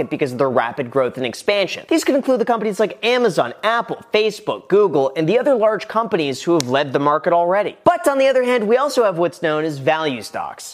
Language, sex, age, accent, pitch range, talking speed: English, male, 30-49, American, 160-225 Hz, 230 wpm